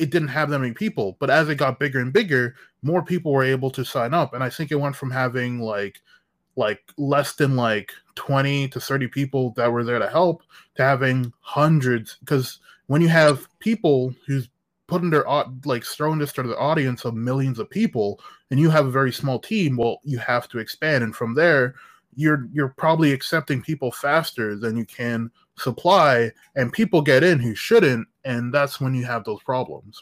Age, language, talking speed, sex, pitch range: 20-39, English, 200 wpm, male, 130-170 Hz